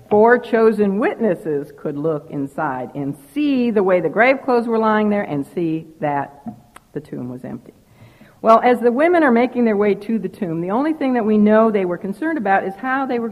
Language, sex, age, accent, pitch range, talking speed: English, female, 60-79, American, 155-220 Hz, 215 wpm